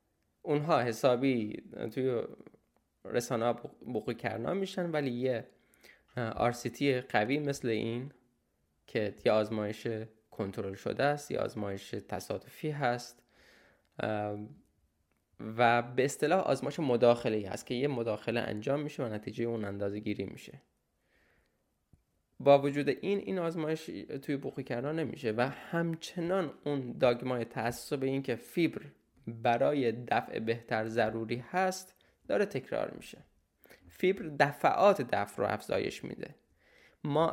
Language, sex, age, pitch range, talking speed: Persian, male, 10-29, 120-155 Hz, 115 wpm